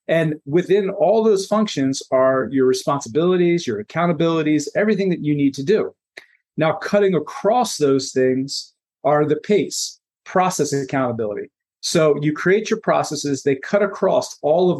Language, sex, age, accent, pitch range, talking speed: English, male, 40-59, American, 145-195 Hz, 150 wpm